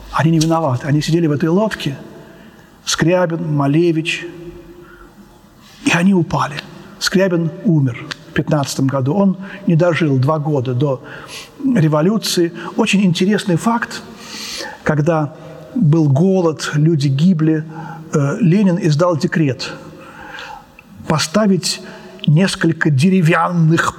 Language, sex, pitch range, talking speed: Russian, male, 150-190 Hz, 100 wpm